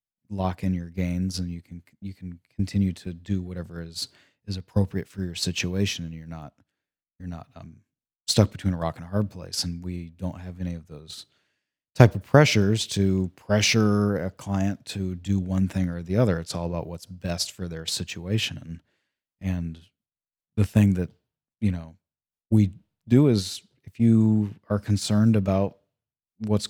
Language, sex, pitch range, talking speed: English, male, 90-105 Hz, 175 wpm